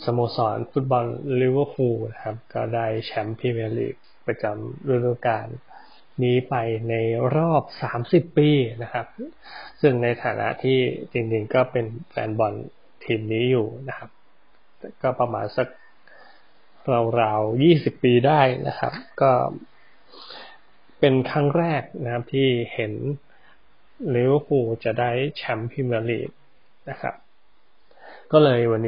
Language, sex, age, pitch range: Thai, male, 20-39, 120-140 Hz